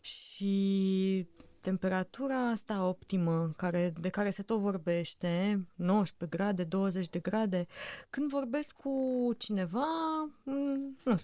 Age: 20-39